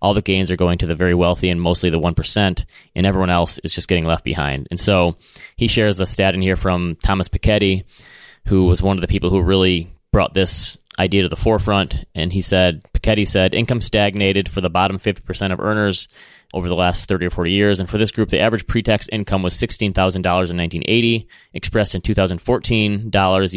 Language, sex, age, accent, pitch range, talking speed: English, male, 20-39, American, 90-105 Hz, 205 wpm